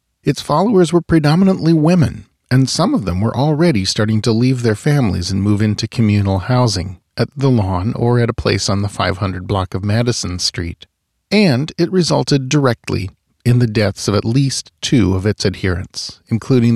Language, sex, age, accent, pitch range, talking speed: English, male, 40-59, American, 100-140 Hz, 180 wpm